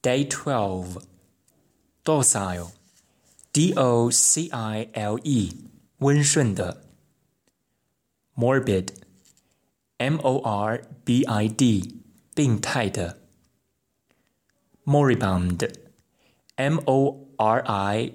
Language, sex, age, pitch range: Chinese, male, 20-39, 100-135 Hz